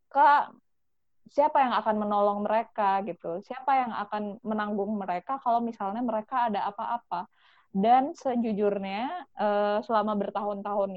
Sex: female